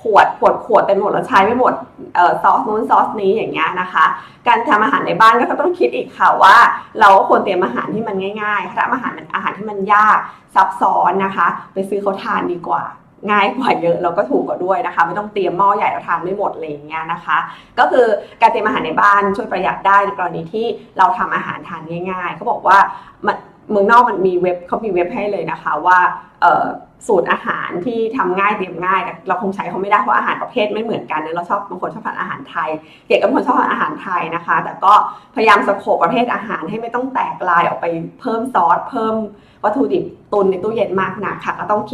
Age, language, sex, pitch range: 20-39, Thai, female, 180-225 Hz